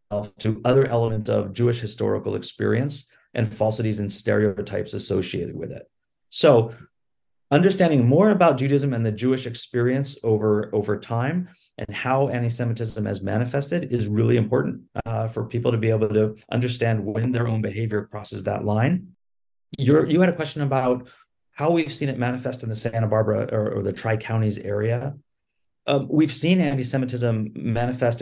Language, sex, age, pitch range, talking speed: English, male, 30-49, 110-135 Hz, 155 wpm